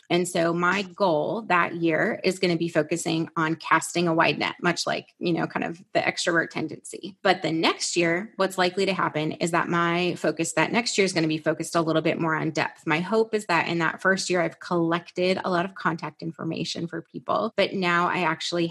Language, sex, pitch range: English, female, 165-190 Hz